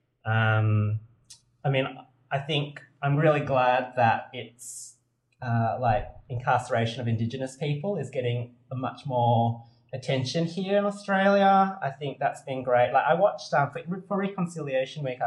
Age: 20-39